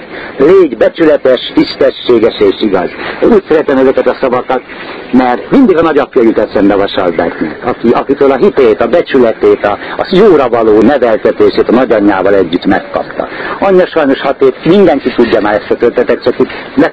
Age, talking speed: 60-79, 150 wpm